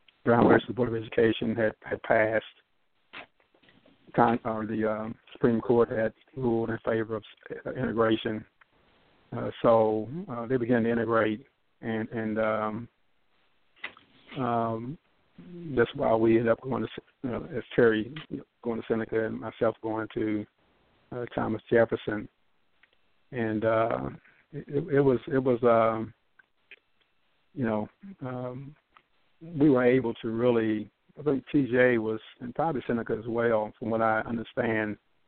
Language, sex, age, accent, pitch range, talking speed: English, male, 50-69, American, 110-120 Hz, 135 wpm